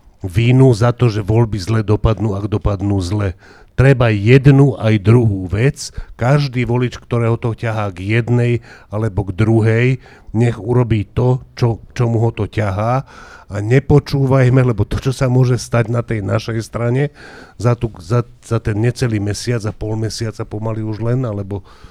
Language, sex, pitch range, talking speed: English, male, 105-125 Hz, 165 wpm